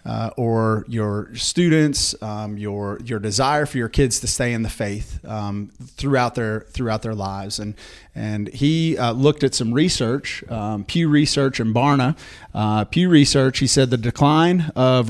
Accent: American